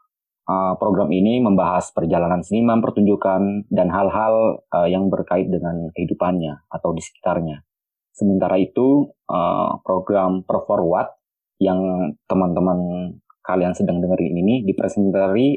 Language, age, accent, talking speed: Indonesian, 20-39, native, 110 wpm